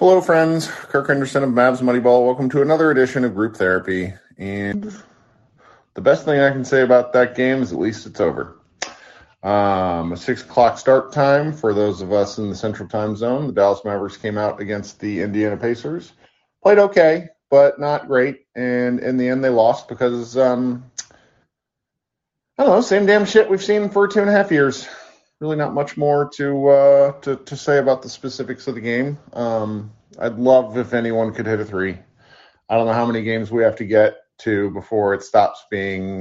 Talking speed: 195 wpm